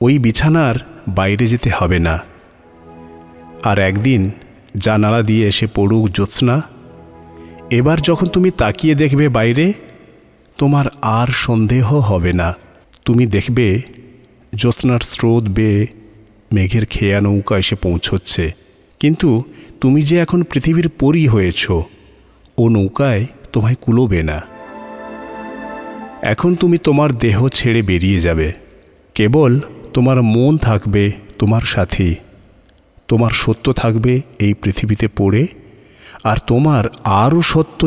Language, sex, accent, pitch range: Bengali, male, native, 100-150 Hz